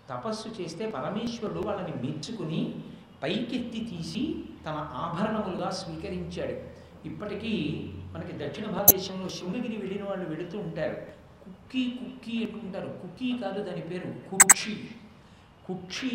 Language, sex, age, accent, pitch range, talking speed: Telugu, male, 60-79, native, 165-210 Hz, 105 wpm